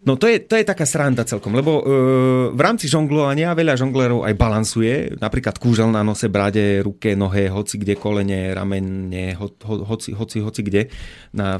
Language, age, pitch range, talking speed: Slovak, 30-49, 105-130 Hz, 180 wpm